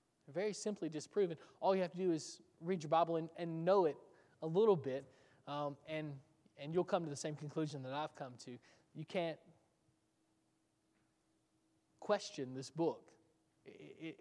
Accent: American